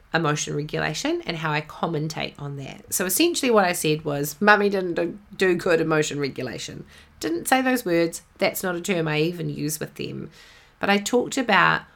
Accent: Australian